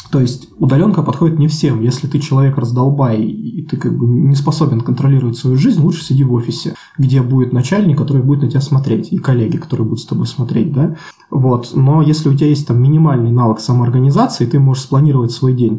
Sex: male